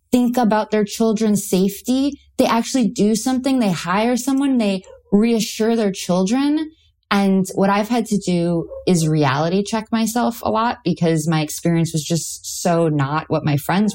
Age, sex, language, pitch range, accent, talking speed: 20-39, female, English, 170-220 Hz, American, 165 wpm